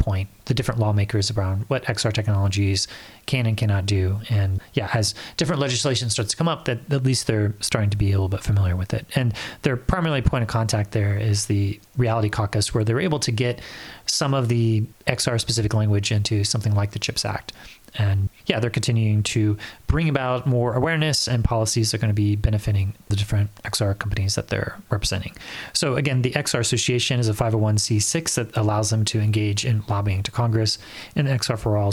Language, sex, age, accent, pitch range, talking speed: English, male, 30-49, American, 105-125 Hz, 200 wpm